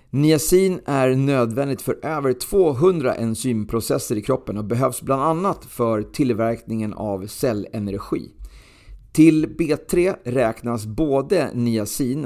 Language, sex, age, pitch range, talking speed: Swedish, male, 40-59, 110-135 Hz, 110 wpm